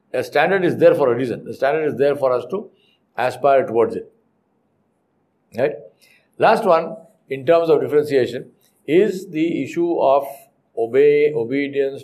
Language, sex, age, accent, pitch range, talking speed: English, male, 60-79, Indian, 135-215 Hz, 150 wpm